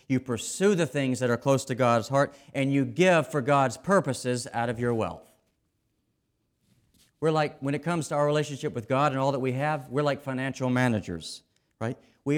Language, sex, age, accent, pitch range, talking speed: English, male, 40-59, American, 105-135 Hz, 200 wpm